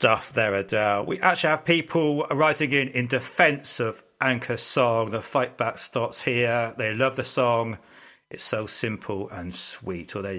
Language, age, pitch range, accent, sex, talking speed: English, 40-59, 110-145 Hz, British, male, 175 wpm